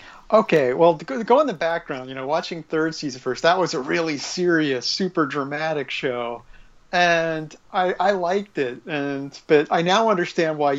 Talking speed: 180 wpm